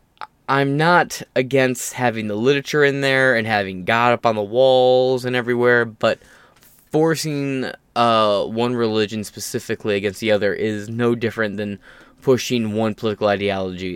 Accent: American